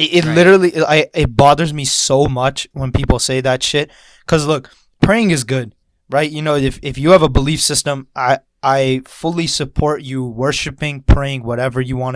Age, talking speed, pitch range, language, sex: 20-39, 185 wpm, 130-160 Hz, English, male